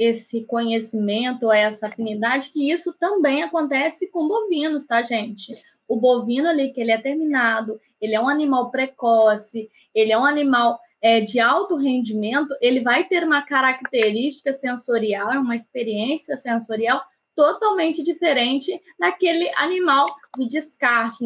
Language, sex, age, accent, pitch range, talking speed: Portuguese, female, 10-29, Brazilian, 230-300 Hz, 135 wpm